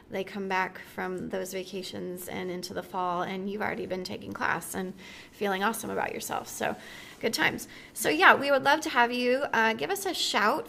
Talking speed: 210 wpm